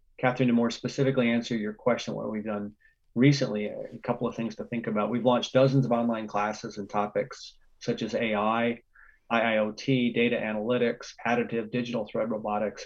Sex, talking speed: male, 170 wpm